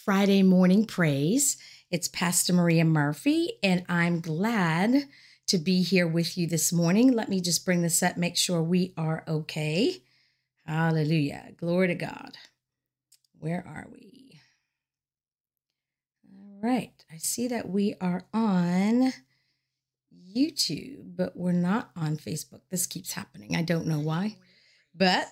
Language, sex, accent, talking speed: English, female, American, 135 wpm